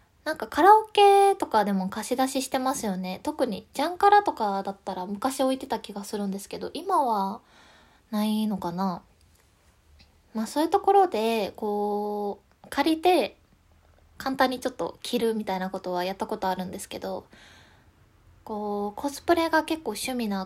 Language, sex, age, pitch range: Japanese, female, 20-39, 190-265 Hz